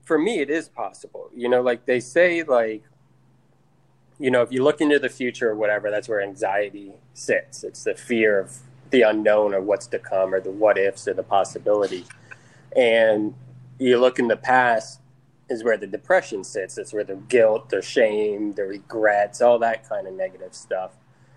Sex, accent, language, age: male, American, English, 20-39